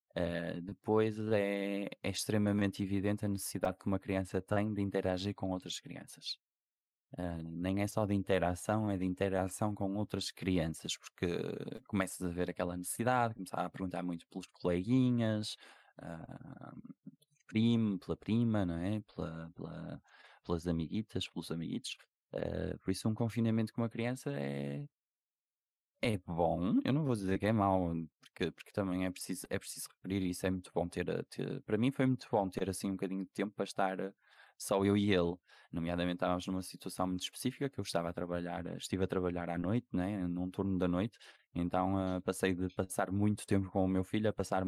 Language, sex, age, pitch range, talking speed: Portuguese, male, 20-39, 90-105 Hz, 185 wpm